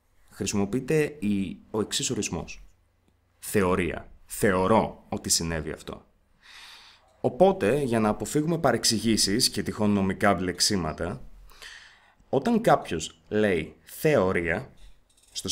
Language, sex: Greek, male